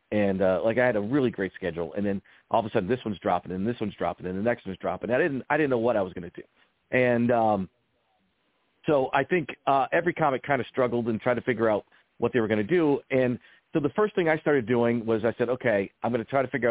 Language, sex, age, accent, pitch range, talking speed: English, male, 40-59, American, 105-130 Hz, 280 wpm